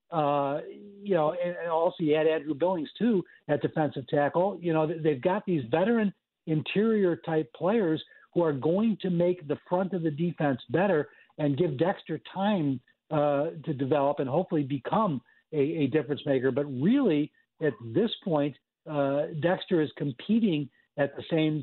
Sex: male